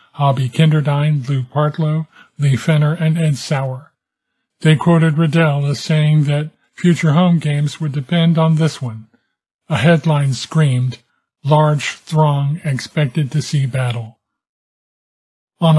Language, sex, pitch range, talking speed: English, male, 145-165 Hz, 125 wpm